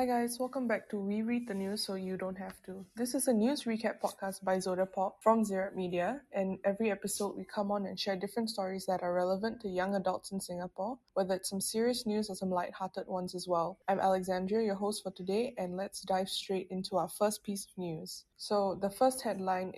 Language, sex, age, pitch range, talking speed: English, female, 20-39, 185-210 Hz, 225 wpm